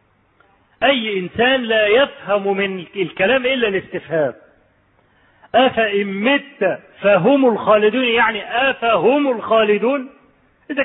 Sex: male